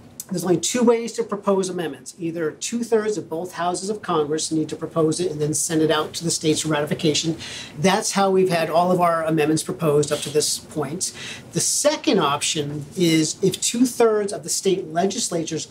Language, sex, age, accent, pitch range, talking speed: English, male, 40-59, American, 155-185 Hz, 195 wpm